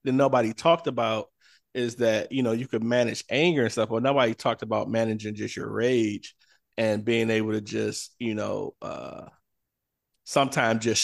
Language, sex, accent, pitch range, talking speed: English, male, American, 105-120 Hz, 170 wpm